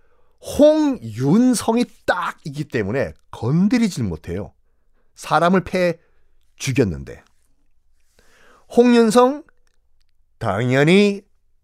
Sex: male